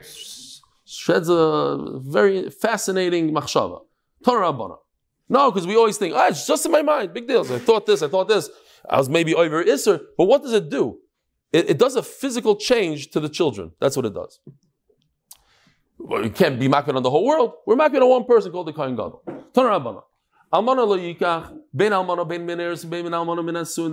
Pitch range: 165-215 Hz